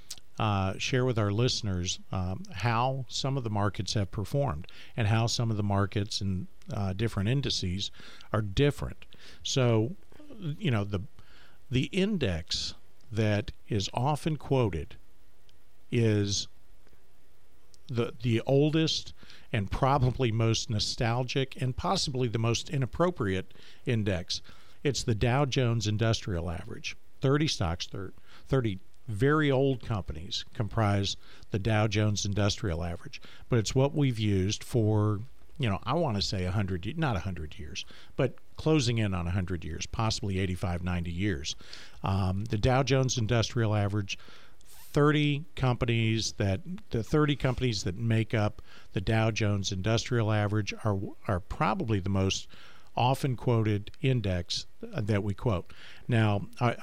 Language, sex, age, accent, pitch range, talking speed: English, male, 50-69, American, 95-125 Hz, 135 wpm